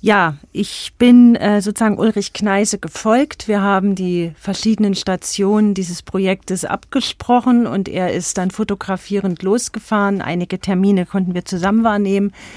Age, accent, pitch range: 40-59, German, 175-210 Hz